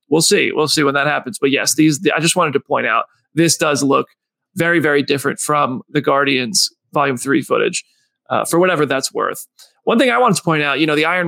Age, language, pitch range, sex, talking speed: 30-49, English, 155-180 Hz, male, 240 wpm